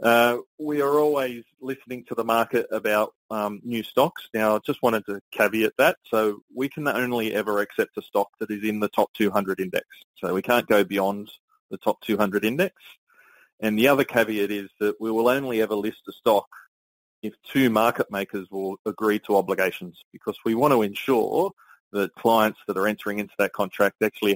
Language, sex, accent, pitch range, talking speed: English, male, Australian, 100-120 Hz, 190 wpm